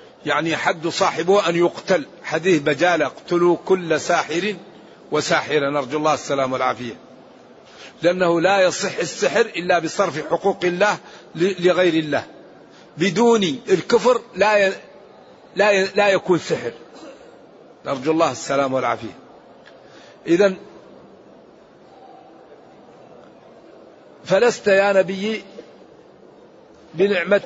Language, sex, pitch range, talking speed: Arabic, male, 165-195 Hz, 95 wpm